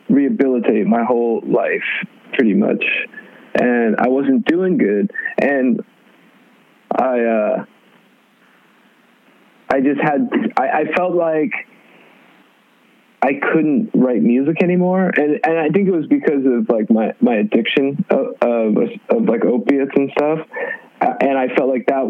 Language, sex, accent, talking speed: English, male, American, 135 wpm